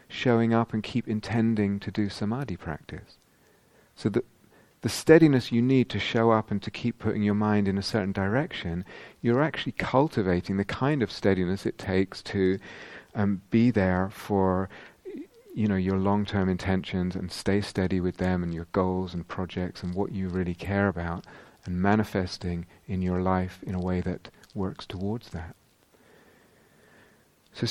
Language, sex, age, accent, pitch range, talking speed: English, male, 40-59, British, 95-115 Hz, 165 wpm